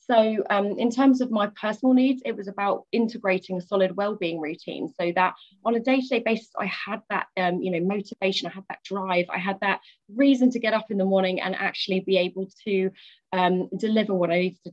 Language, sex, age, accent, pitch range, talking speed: English, female, 20-39, British, 180-230 Hz, 210 wpm